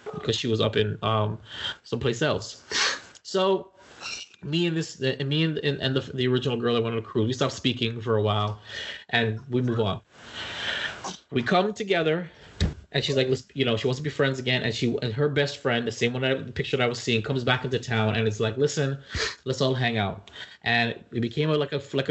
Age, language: 20-39, English